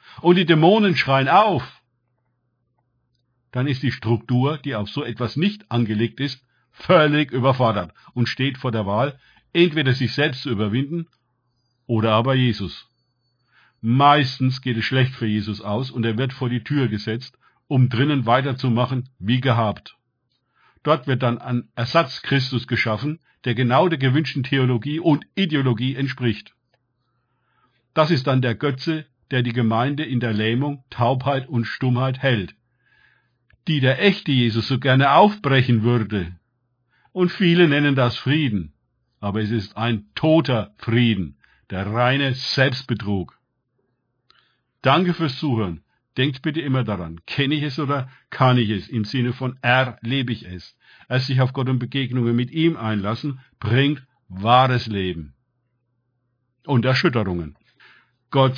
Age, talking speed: 50-69, 140 wpm